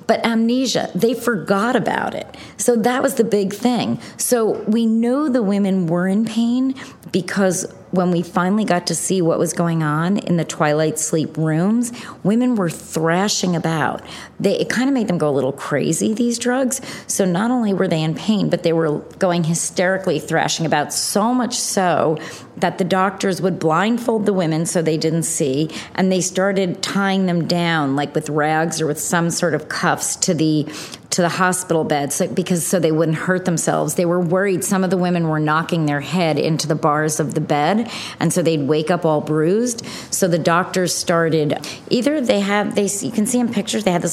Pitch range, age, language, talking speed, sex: 160-210 Hz, 40-59, English, 195 wpm, female